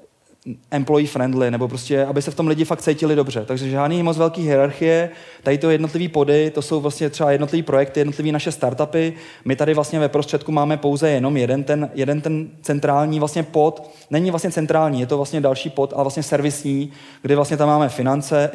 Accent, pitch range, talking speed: native, 135-155 Hz, 195 wpm